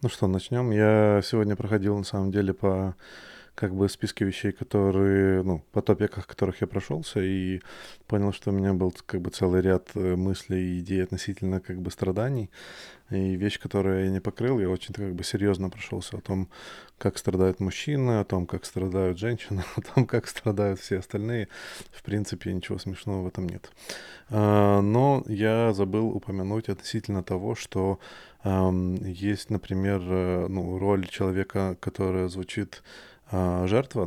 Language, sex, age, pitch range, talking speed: Russian, male, 20-39, 95-105 Hz, 160 wpm